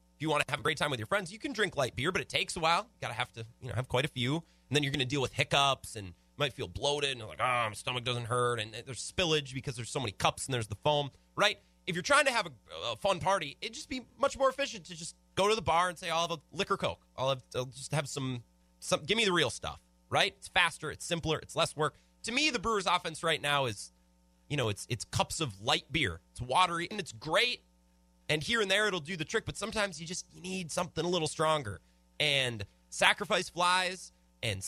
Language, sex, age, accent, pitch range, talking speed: English, male, 30-49, American, 105-170 Hz, 265 wpm